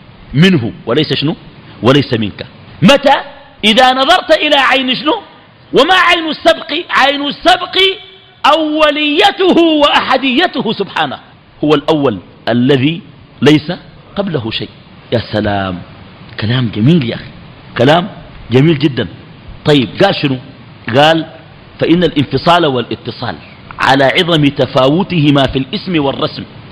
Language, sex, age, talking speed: Arabic, male, 50-69, 105 wpm